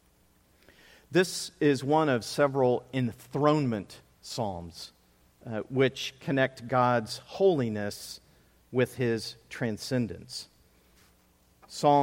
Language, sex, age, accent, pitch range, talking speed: English, male, 40-59, American, 95-140 Hz, 80 wpm